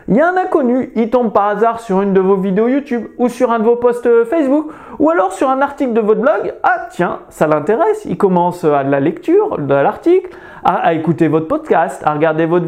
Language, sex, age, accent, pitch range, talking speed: French, male, 30-49, French, 175-275 Hz, 225 wpm